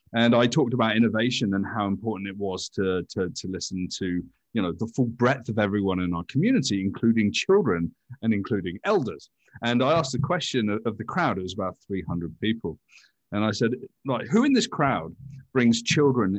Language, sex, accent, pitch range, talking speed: English, male, British, 105-150 Hz, 195 wpm